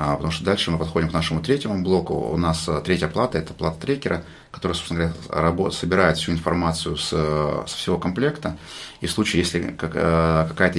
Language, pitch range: Russian, 80-85 Hz